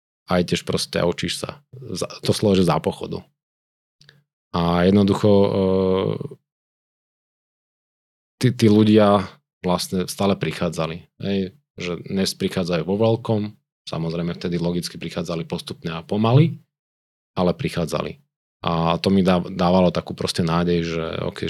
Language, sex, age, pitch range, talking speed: Slovak, male, 30-49, 85-105 Hz, 110 wpm